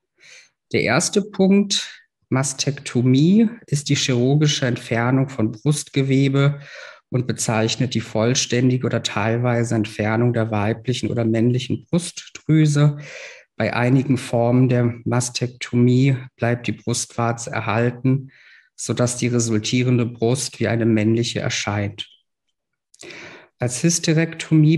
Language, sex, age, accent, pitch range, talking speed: German, male, 50-69, German, 120-140 Hz, 100 wpm